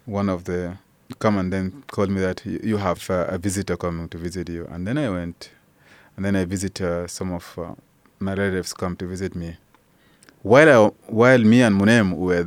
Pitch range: 90-110 Hz